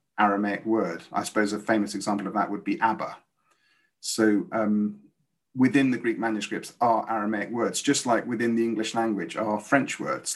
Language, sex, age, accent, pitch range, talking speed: English, male, 30-49, British, 105-140 Hz, 175 wpm